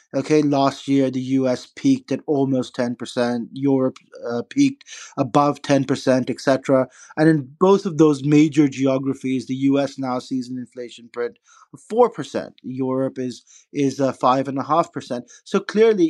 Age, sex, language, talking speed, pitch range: 30-49, male, English, 165 wpm, 125-145 Hz